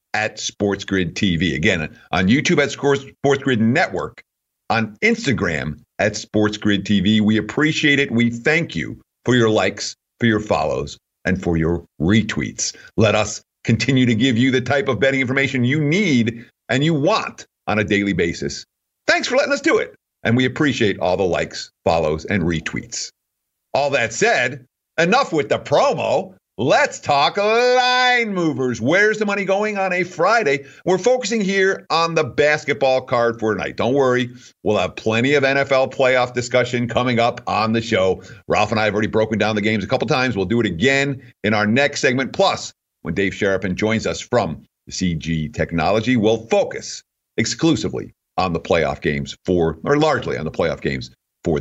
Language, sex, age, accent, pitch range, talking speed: English, male, 50-69, American, 105-145 Hz, 175 wpm